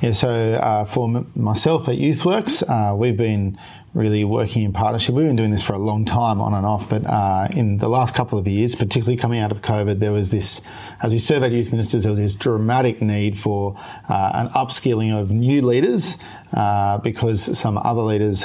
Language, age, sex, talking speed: English, 40-59, male, 205 wpm